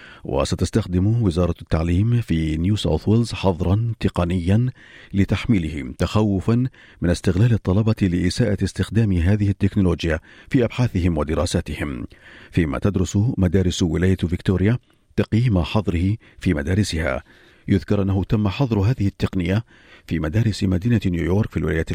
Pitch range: 90-110 Hz